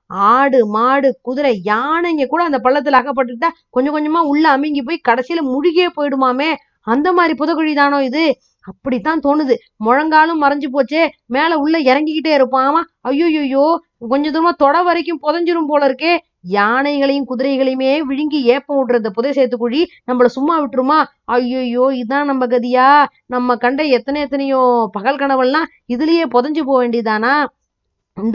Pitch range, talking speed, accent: 245-305 Hz, 135 wpm, native